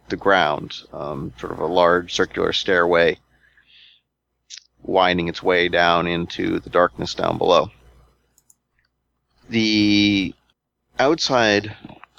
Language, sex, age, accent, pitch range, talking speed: English, male, 30-49, American, 85-105 Hz, 100 wpm